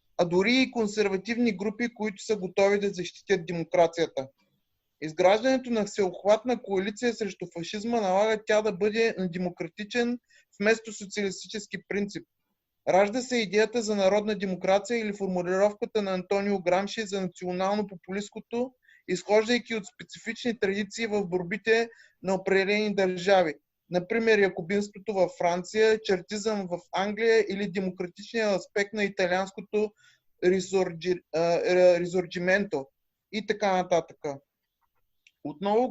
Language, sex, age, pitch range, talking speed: Bulgarian, male, 20-39, 185-215 Hz, 105 wpm